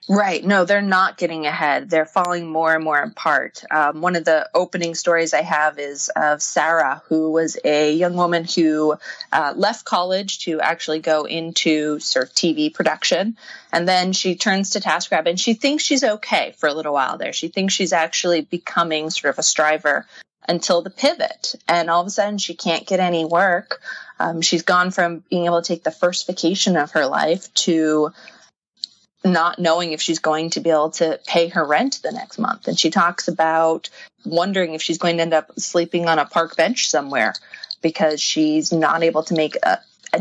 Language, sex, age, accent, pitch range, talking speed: English, female, 20-39, American, 160-195 Hz, 200 wpm